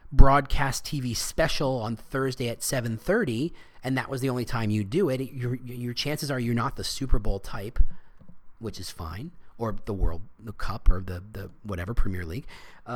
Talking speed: 190 wpm